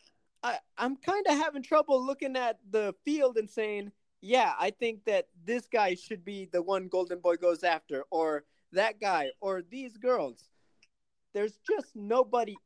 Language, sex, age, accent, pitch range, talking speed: English, male, 20-39, American, 190-240 Hz, 160 wpm